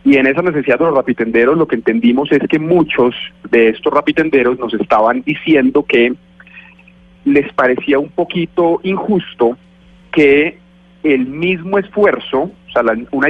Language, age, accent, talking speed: Spanish, 30-49, Colombian, 150 wpm